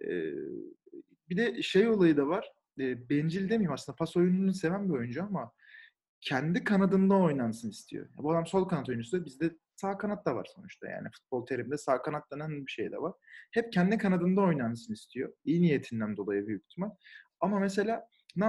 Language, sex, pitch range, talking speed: Turkish, male, 130-195 Hz, 180 wpm